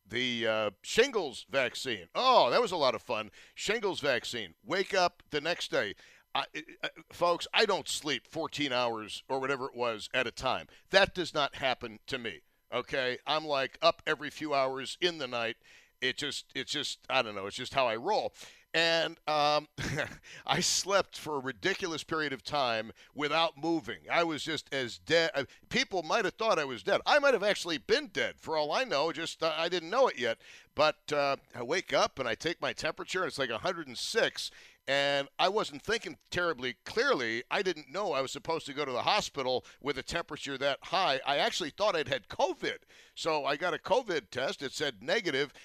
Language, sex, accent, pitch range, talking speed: English, male, American, 130-165 Hz, 200 wpm